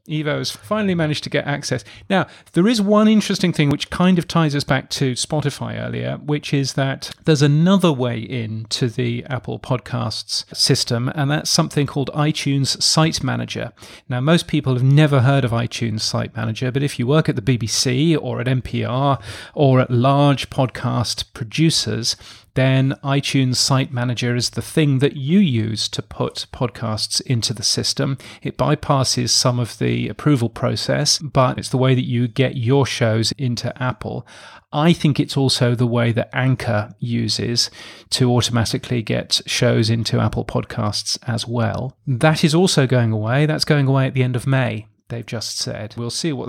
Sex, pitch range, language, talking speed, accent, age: male, 120-145 Hz, English, 175 wpm, British, 40-59